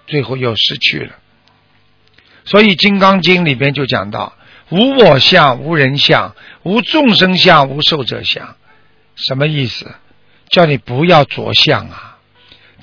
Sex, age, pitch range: male, 60-79, 120-190 Hz